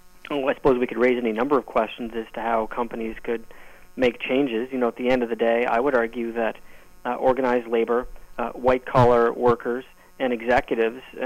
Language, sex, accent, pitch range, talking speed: English, male, American, 120-135 Hz, 190 wpm